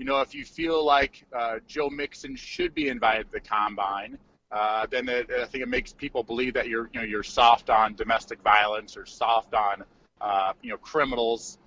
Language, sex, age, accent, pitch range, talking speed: English, male, 30-49, American, 120-155 Hz, 205 wpm